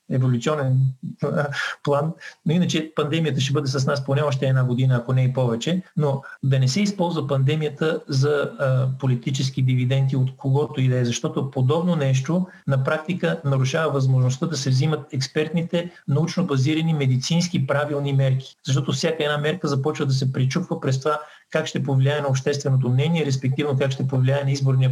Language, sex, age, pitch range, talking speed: Bulgarian, male, 40-59, 130-155 Hz, 165 wpm